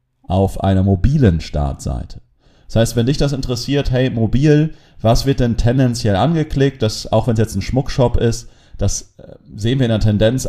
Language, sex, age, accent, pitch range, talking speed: German, male, 40-59, German, 95-120 Hz, 170 wpm